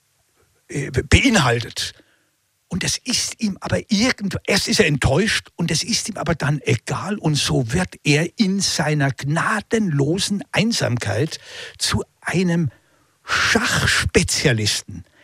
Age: 60-79